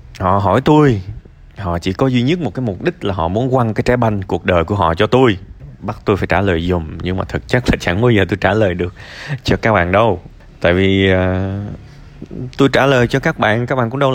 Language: Vietnamese